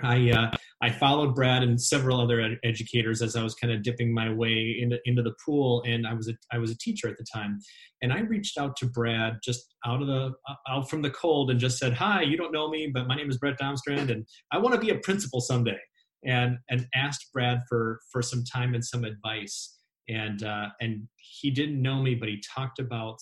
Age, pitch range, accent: 30-49, 115-140 Hz, American